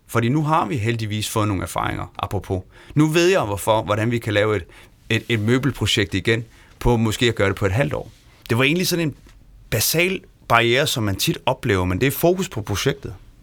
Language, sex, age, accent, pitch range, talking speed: Danish, male, 30-49, native, 105-135 Hz, 215 wpm